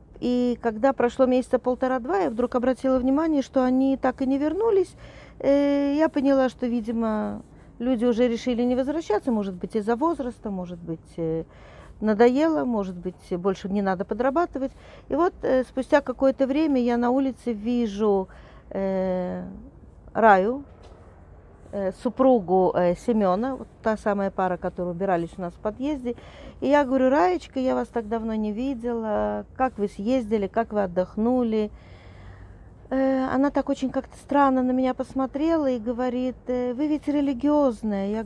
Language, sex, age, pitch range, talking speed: Russian, female, 40-59, 205-265 Hz, 145 wpm